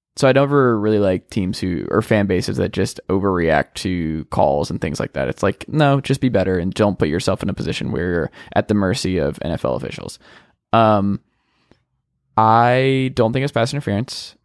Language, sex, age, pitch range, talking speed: English, male, 20-39, 105-135 Hz, 195 wpm